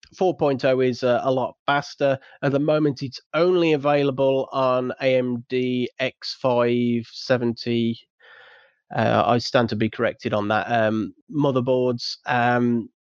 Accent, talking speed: British, 115 wpm